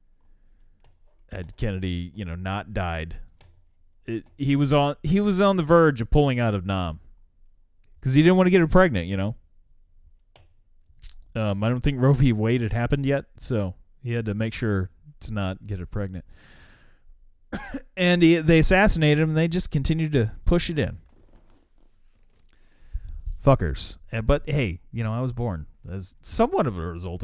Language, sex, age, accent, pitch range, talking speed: English, male, 30-49, American, 90-150 Hz, 170 wpm